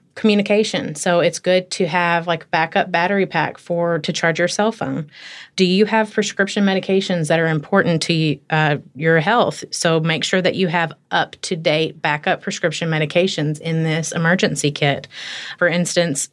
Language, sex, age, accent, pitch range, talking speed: English, female, 30-49, American, 160-185 Hz, 170 wpm